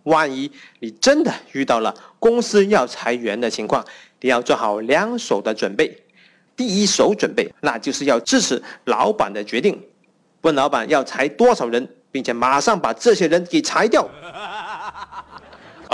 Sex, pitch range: male, 160-235 Hz